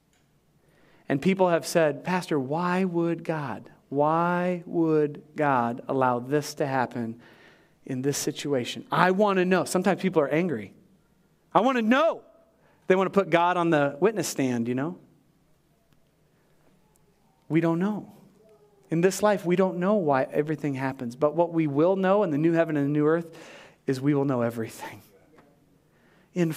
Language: English